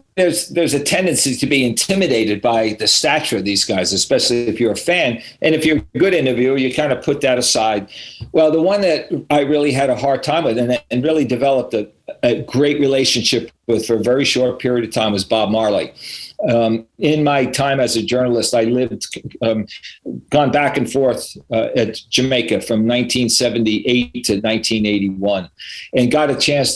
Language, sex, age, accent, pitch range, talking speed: English, male, 50-69, American, 115-140 Hz, 190 wpm